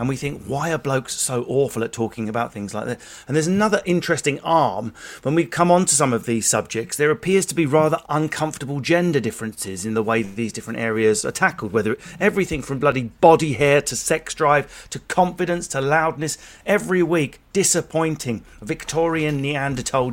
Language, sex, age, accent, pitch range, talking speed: English, male, 40-59, British, 115-155 Hz, 185 wpm